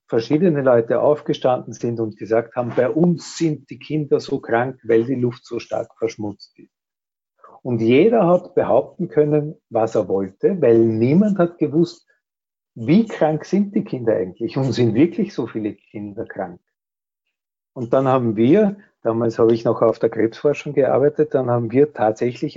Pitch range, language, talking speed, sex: 115-150 Hz, German, 165 wpm, male